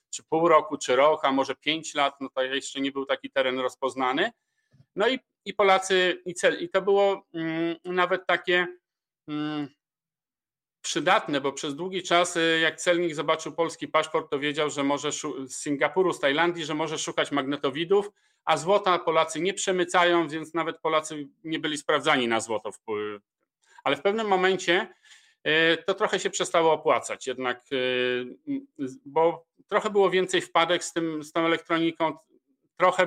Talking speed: 160 wpm